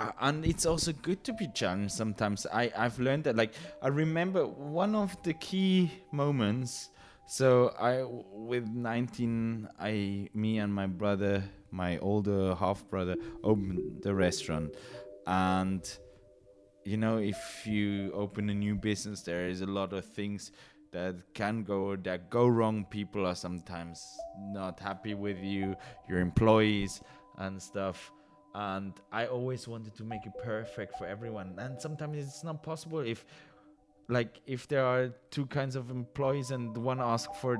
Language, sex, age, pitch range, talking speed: English, male, 20-39, 100-135 Hz, 155 wpm